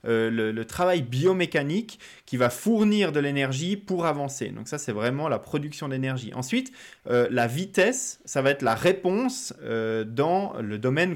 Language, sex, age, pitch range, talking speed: French, male, 20-39, 120-160 Hz, 170 wpm